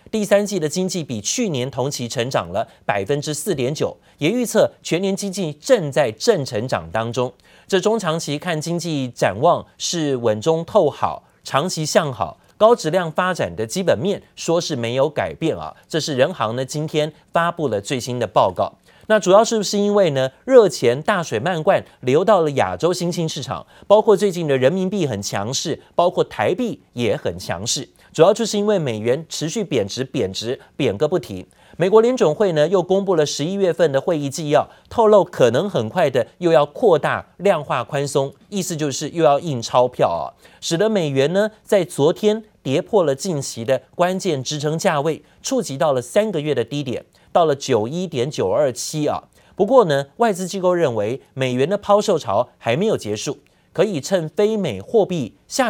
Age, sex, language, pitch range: 30-49, male, Chinese, 135-200 Hz